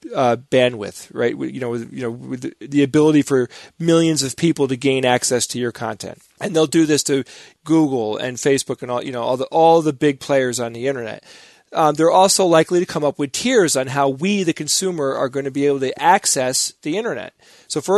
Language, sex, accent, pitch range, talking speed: English, male, American, 130-155 Hz, 230 wpm